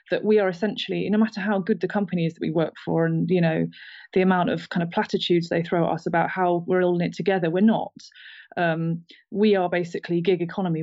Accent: British